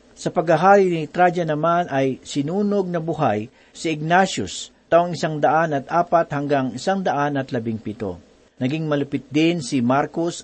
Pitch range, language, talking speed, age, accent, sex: 135-175 Hz, Filipino, 150 wpm, 50-69, native, male